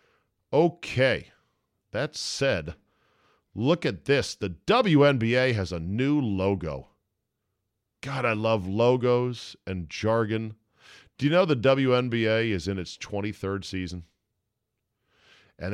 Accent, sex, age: American, male, 40-59